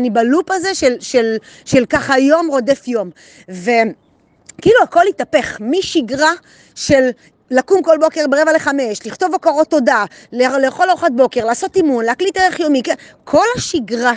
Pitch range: 230-310 Hz